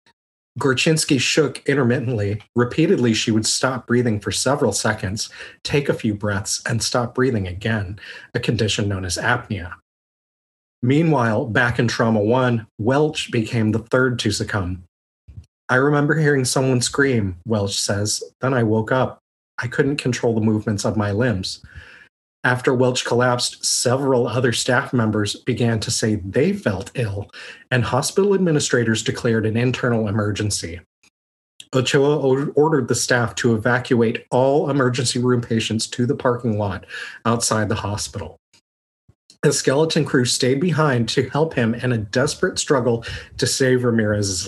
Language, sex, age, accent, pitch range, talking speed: English, male, 30-49, American, 105-130 Hz, 145 wpm